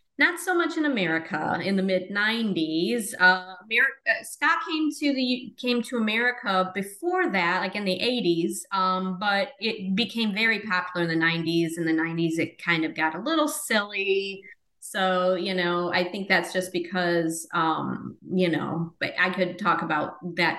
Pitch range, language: 170-210 Hz, English